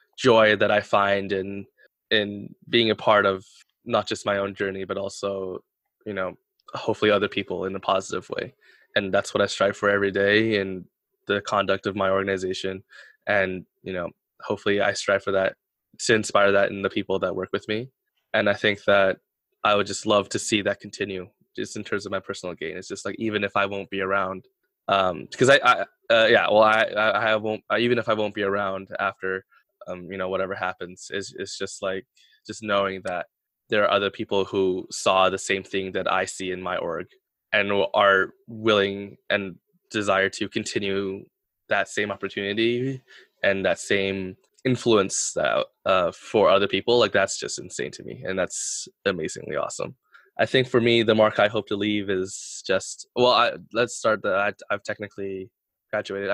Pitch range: 95-110 Hz